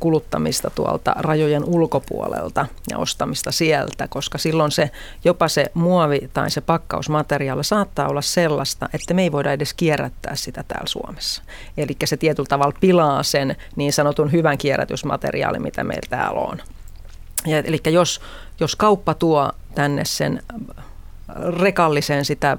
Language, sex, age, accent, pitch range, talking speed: Finnish, female, 30-49, native, 140-165 Hz, 135 wpm